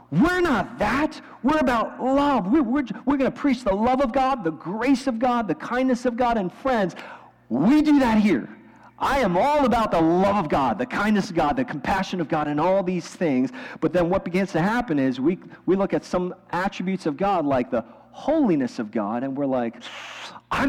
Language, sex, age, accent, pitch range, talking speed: English, male, 40-59, American, 185-265 Hz, 215 wpm